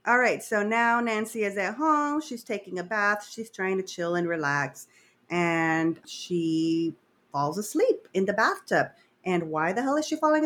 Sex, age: female, 30-49